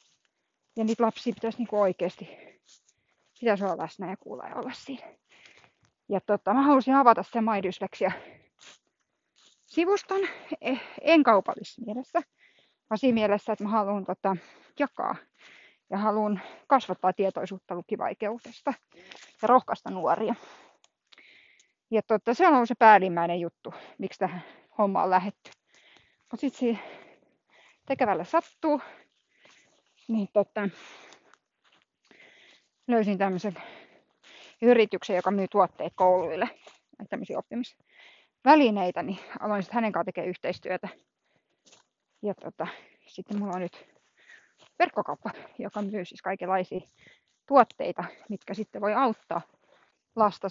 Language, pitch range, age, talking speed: Finnish, 190-240 Hz, 20-39, 105 wpm